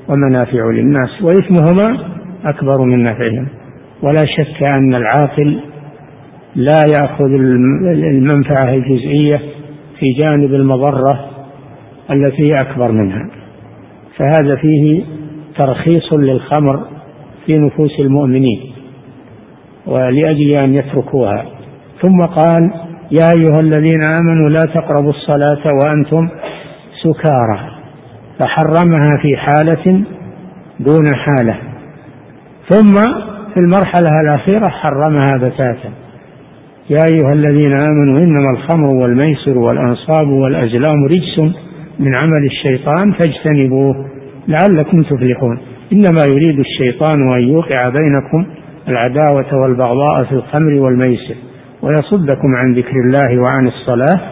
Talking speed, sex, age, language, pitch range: 95 wpm, male, 60-79, Arabic, 130-155 Hz